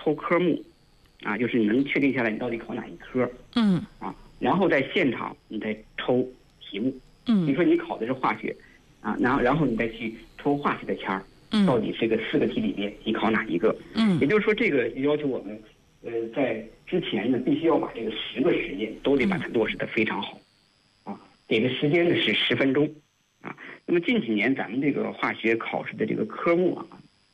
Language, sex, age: Chinese, male, 50-69